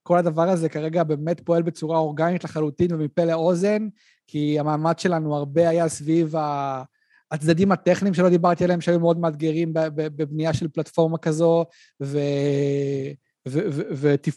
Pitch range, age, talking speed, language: 155-190 Hz, 30-49, 130 wpm, Hebrew